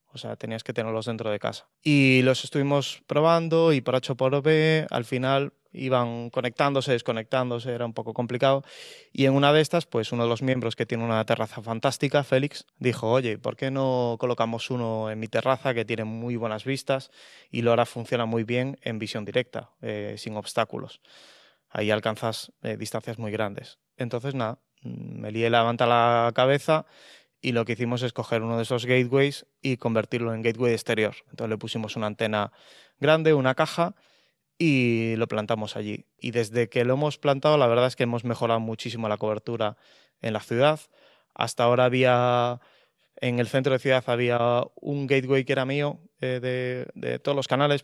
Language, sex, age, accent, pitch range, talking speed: English, male, 20-39, Spanish, 115-135 Hz, 185 wpm